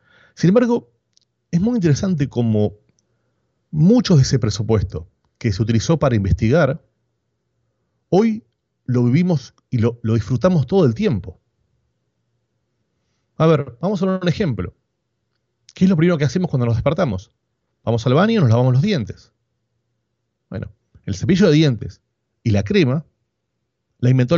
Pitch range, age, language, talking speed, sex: 115-165 Hz, 30-49, Spanish, 145 wpm, male